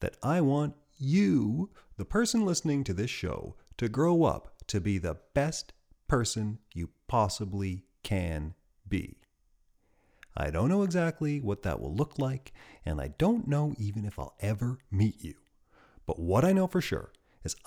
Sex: male